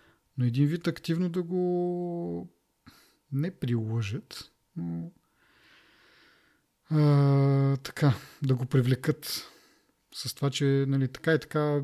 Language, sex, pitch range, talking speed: Bulgarian, male, 120-150 Hz, 105 wpm